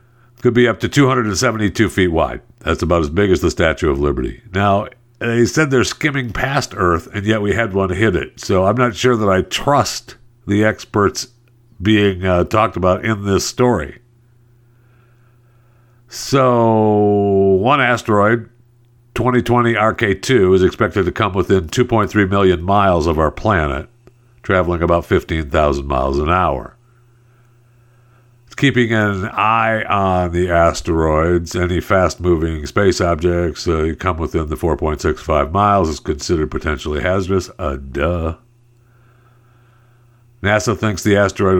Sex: male